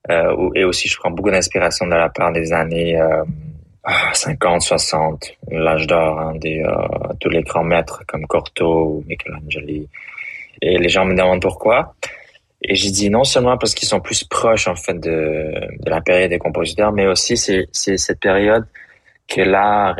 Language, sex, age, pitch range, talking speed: French, male, 20-39, 85-95 Hz, 180 wpm